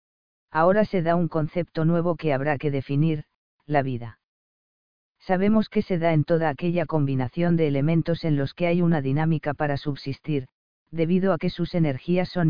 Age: 50-69